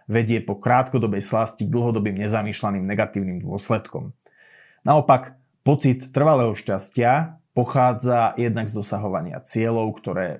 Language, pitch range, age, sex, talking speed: Slovak, 110-130 Hz, 30-49, male, 110 wpm